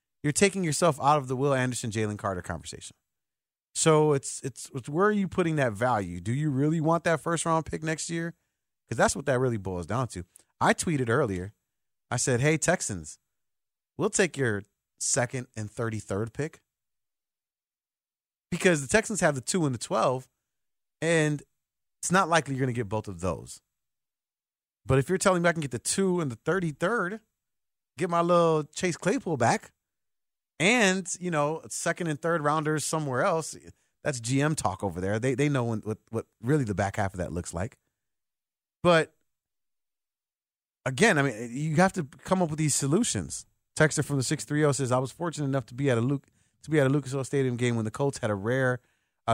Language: English